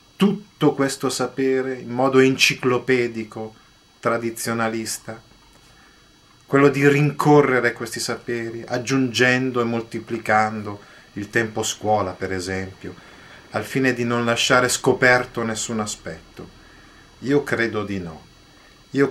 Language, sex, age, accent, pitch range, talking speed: Italian, male, 30-49, native, 110-130 Hz, 105 wpm